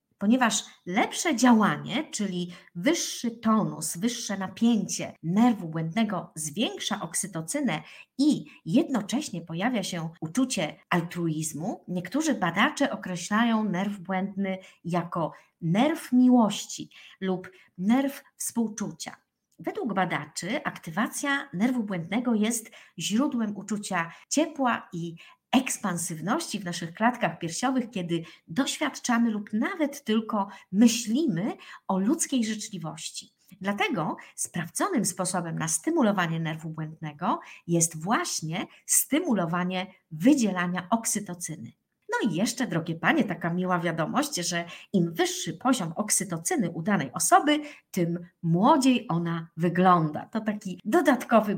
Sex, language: female, Polish